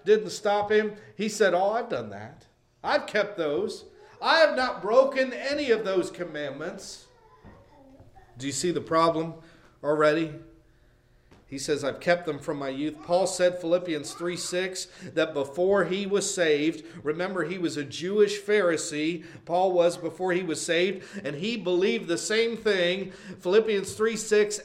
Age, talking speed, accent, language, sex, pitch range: 50-69, 160 wpm, American, English, male, 185-235 Hz